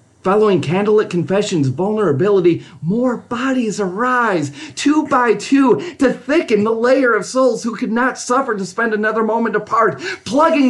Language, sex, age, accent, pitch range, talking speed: English, male, 30-49, American, 155-215 Hz, 145 wpm